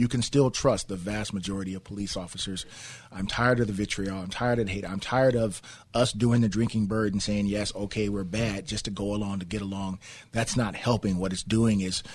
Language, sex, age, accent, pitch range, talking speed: English, male, 30-49, American, 95-110 Hz, 235 wpm